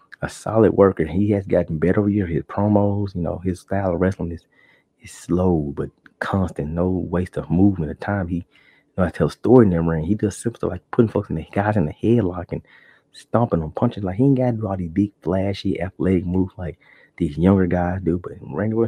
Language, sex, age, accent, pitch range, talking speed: English, male, 30-49, American, 85-115 Hz, 230 wpm